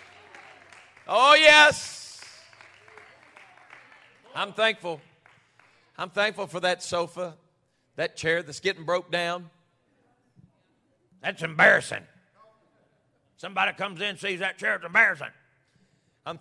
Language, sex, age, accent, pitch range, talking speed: English, male, 40-59, American, 125-175 Hz, 95 wpm